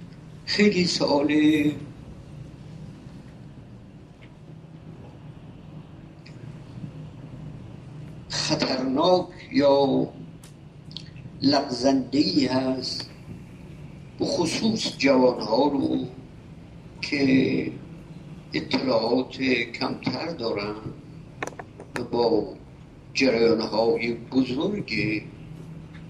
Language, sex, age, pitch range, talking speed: Persian, male, 50-69, 125-155 Hz, 45 wpm